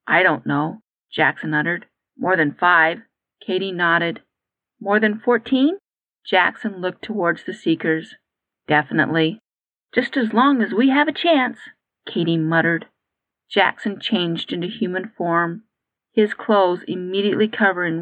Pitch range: 170-220 Hz